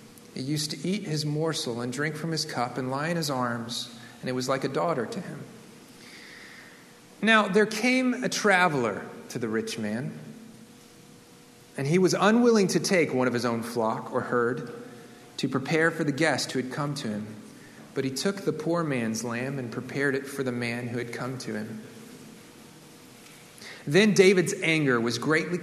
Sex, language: male, English